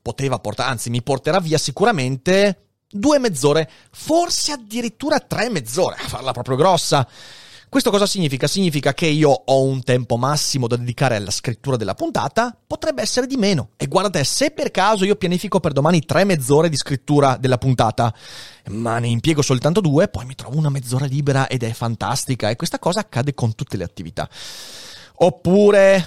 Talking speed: 175 wpm